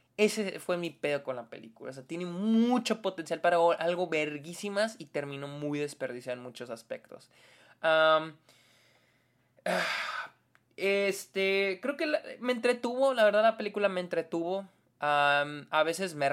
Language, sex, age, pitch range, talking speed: Spanish, male, 20-39, 130-175 Hz, 130 wpm